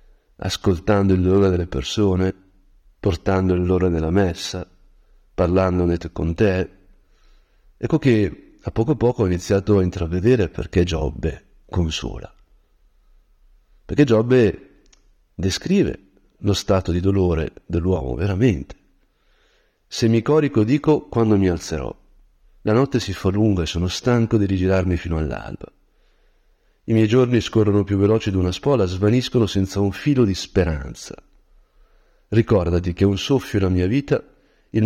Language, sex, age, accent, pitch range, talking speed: Italian, male, 50-69, native, 90-110 Hz, 135 wpm